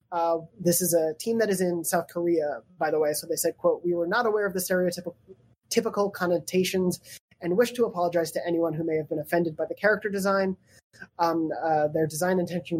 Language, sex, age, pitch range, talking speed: English, male, 20-39, 160-185 Hz, 205 wpm